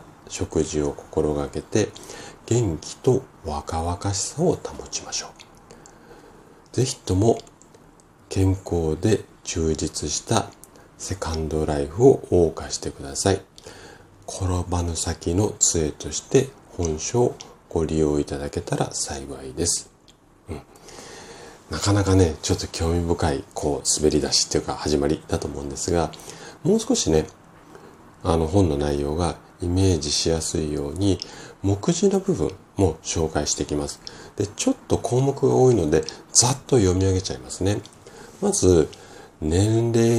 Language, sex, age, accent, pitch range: Japanese, male, 40-59, native, 80-100 Hz